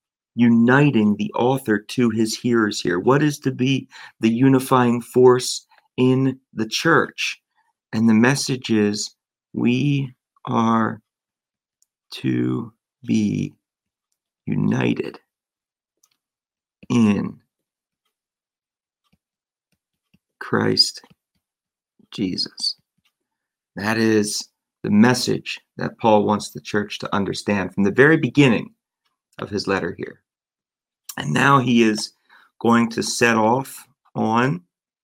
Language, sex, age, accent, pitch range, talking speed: English, male, 40-59, American, 110-130 Hz, 100 wpm